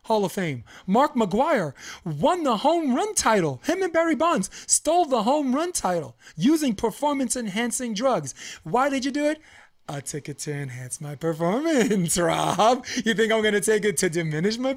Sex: male